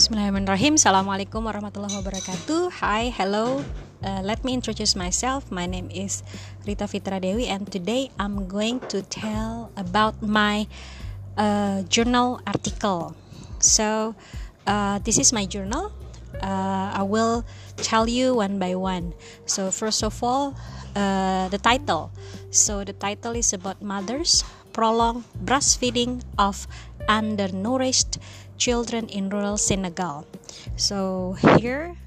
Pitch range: 175-215 Hz